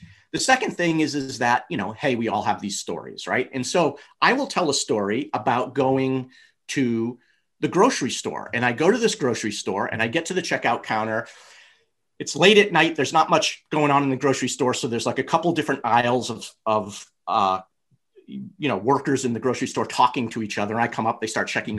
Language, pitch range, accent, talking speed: English, 110-150 Hz, American, 225 wpm